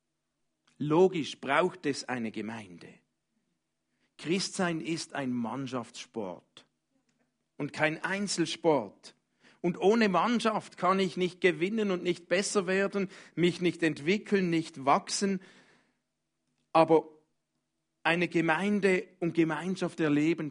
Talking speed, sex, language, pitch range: 100 wpm, male, German, 140-190 Hz